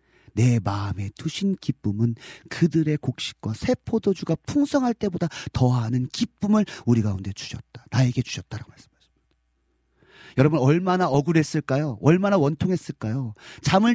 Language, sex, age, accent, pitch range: Korean, male, 40-59, native, 115-190 Hz